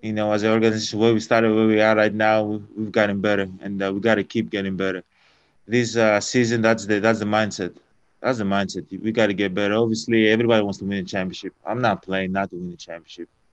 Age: 20-39